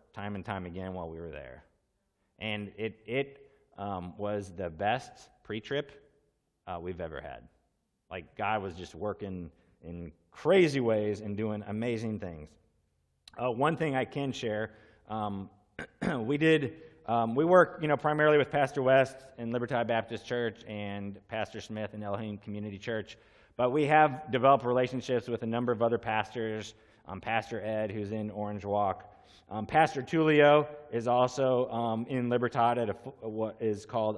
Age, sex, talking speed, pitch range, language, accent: 30-49, male, 160 wpm, 100-125 Hz, English, American